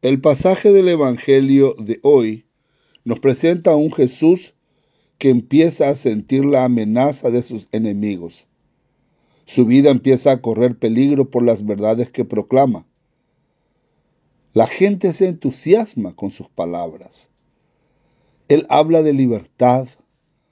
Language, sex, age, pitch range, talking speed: English, male, 60-79, 120-155 Hz, 125 wpm